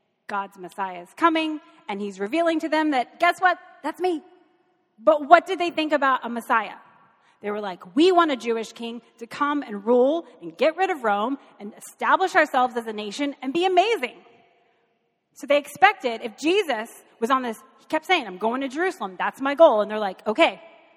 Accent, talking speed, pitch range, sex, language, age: American, 200 wpm, 225-315 Hz, female, English, 30-49